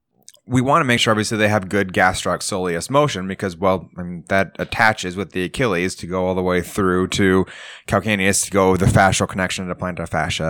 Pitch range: 95-120 Hz